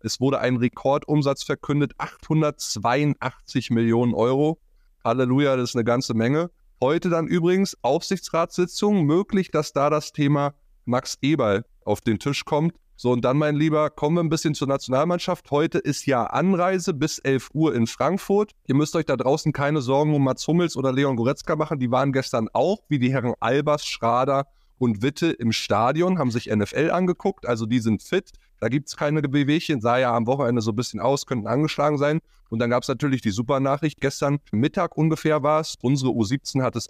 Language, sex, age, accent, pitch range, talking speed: German, male, 30-49, German, 120-155 Hz, 190 wpm